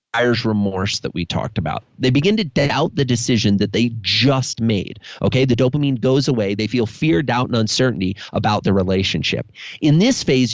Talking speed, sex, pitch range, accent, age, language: 180 wpm, male, 105-135 Hz, American, 30-49, English